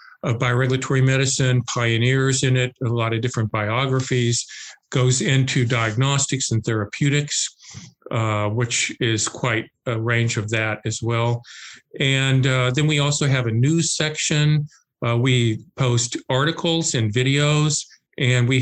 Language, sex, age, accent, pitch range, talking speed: English, male, 50-69, American, 115-140 Hz, 140 wpm